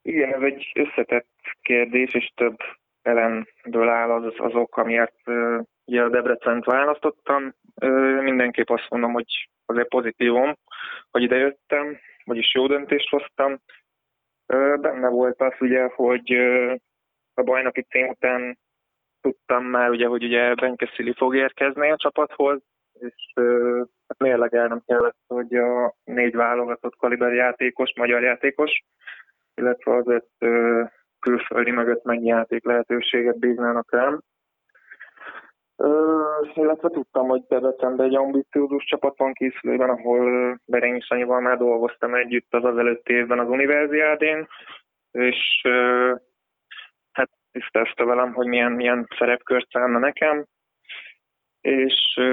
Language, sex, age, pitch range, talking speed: Hungarian, male, 20-39, 120-130 Hz, 125 wpm